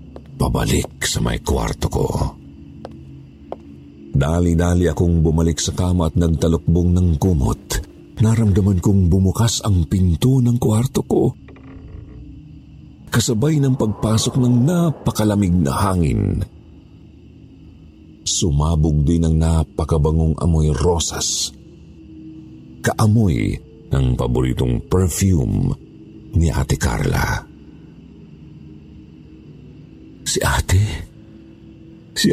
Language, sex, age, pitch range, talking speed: Filipino, male, 50-69, 80-100 Hz, 85 wpm